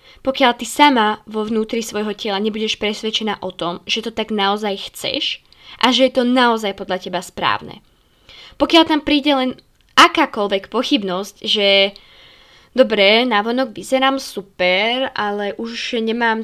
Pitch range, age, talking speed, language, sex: 205-270 Hz, 20-39, 140 wpm, Slovak, female